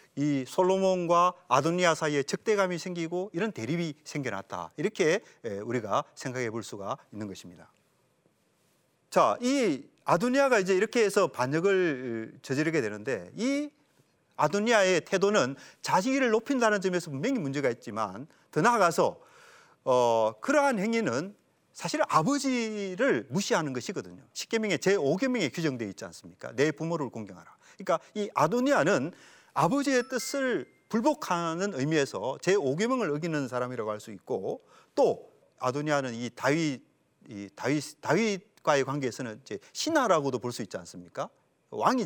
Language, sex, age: Korean, male, 40-59